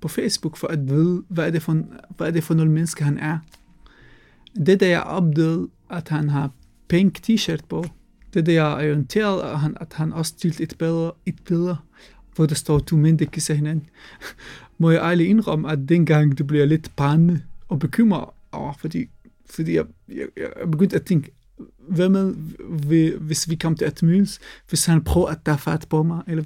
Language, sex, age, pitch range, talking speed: Danish, male, 30-49, 155-175 Hz, 195 wpm